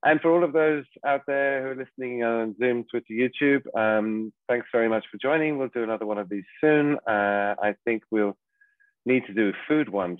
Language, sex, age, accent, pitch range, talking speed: English, male, 40-59, British, 95-130 Hz, 220 wpm